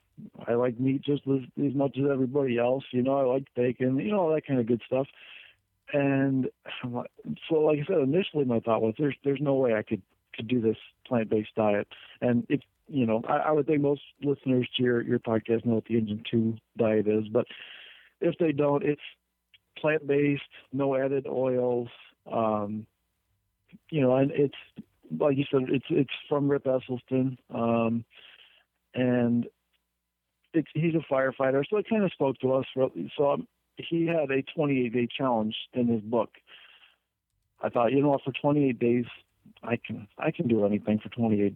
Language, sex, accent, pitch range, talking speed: English, male, American, 110-140 Hz, 180 wpm